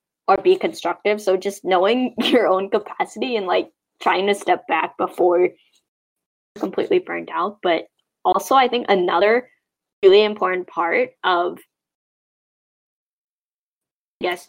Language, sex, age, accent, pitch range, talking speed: English, female, 10-29, American, 175-235 Hz, 120 wpm